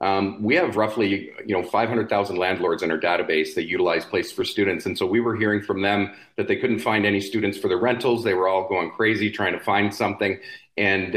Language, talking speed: English, 225 wpm